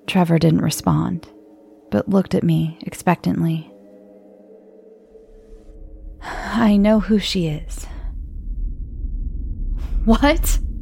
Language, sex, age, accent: English, female, 20-39, American